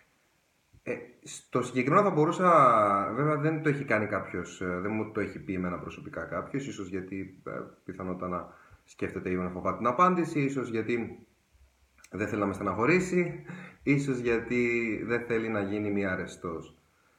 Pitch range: 95-135 Hz